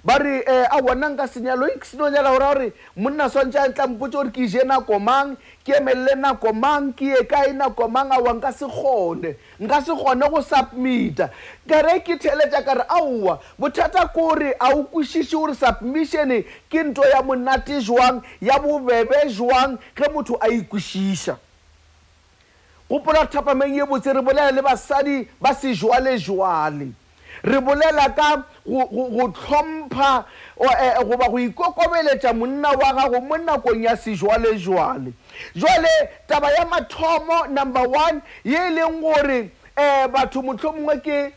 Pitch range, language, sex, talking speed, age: 250-295 Hz, English, male, 110 wpm, 50-69